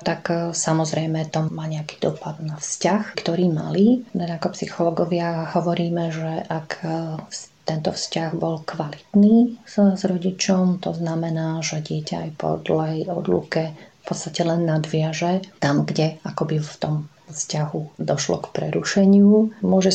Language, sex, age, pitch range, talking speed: Slovak, female, 30-49, 165-185 Hz, 135 wpm